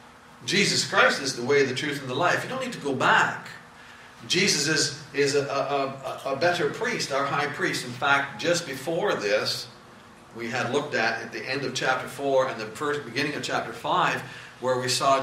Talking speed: 210 wpm